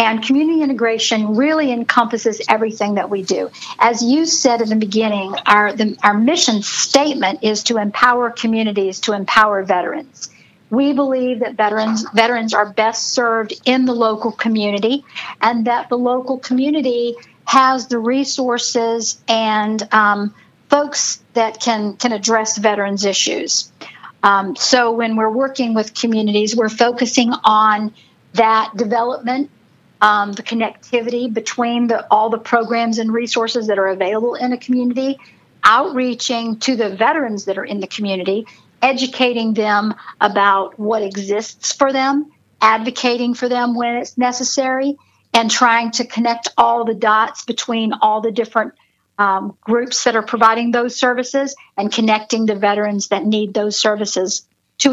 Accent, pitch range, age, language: American, 215-245 Hz, 50-69, English